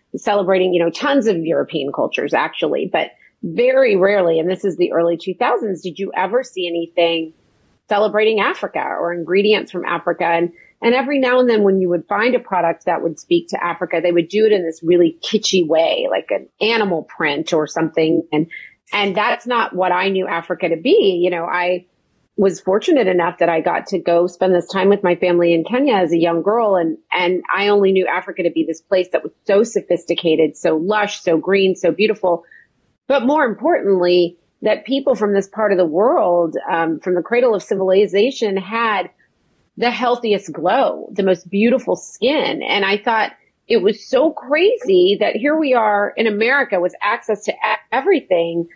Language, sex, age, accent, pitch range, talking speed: English, female, 30-49, American, 170-215 Hz, 190 wpm